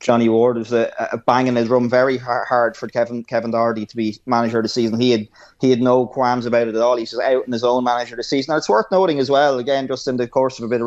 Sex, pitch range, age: male, 120-135 Hz, 20-39